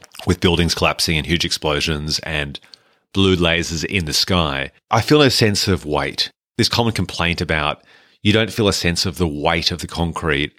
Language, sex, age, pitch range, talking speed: English, male, 30-49, 80-95 Hz, 185 wpm